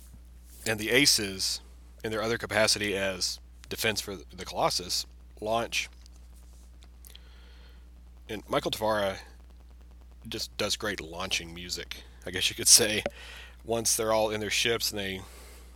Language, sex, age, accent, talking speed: English, male, 30-49, American, 130 wpm